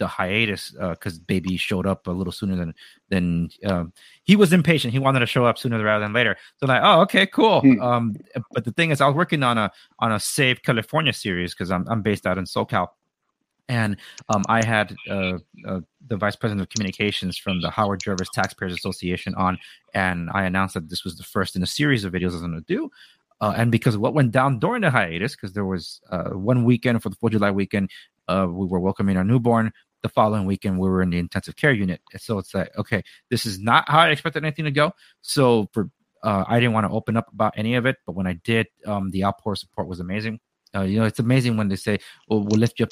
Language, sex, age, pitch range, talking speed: English, male, 30-49, 95-115 Hz, 245 wpm